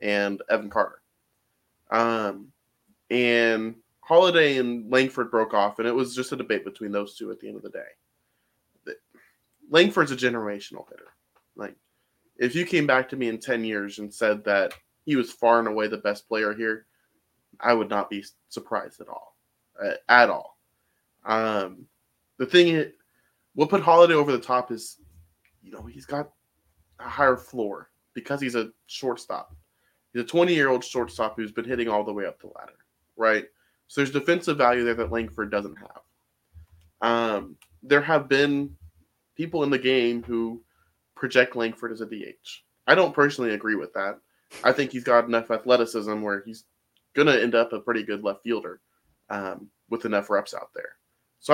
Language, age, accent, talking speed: English, 20-39, American, 175 wpm